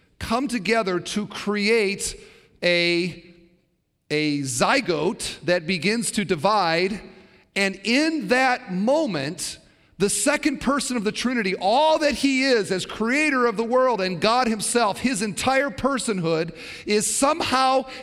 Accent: American